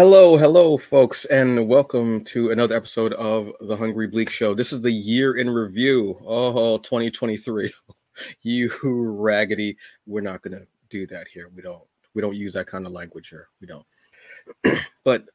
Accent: American